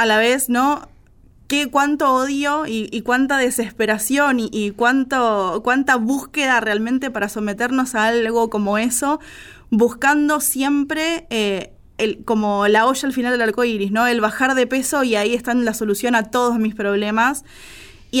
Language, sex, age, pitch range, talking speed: Spanish, female, 20-39, 220-260 Hz, 165 wpm